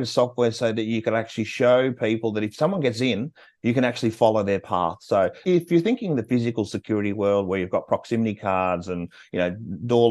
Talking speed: 215 wpm